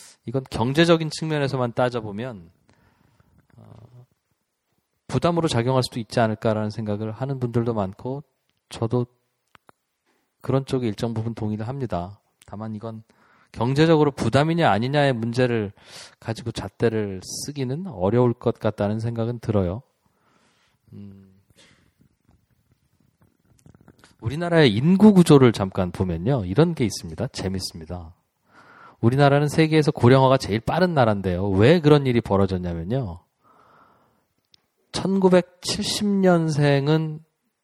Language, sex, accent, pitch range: Korean, male, native, 105-135 Hz